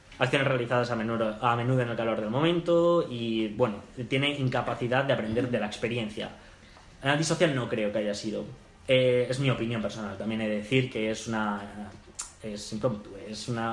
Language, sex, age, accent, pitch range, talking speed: Spanish, male, 20-39, Spanish, 115-145 Hz, 180 wpm